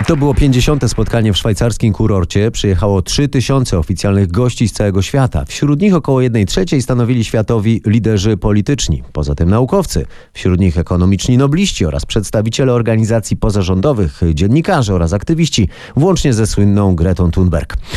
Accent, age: native, 30-49